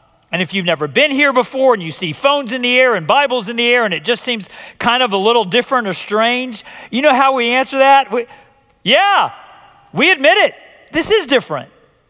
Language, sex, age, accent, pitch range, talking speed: English, male, 40-59, American, 140-230 Hz, 215 wpm